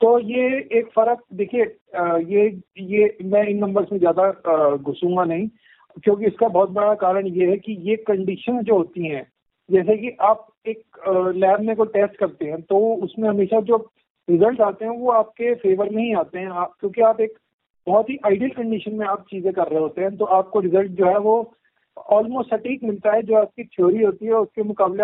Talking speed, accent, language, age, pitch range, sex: 195 wpm, native, Hindi, 50-69, 180-220 Hz, male